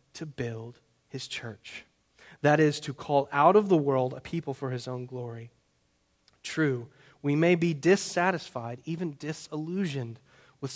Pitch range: 135-180 Hz